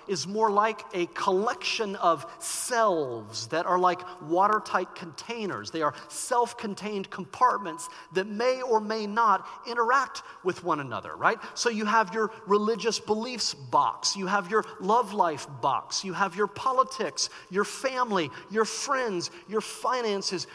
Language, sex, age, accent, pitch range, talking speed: English, male, 40-59, American, 195-260 Hz, 145 wpm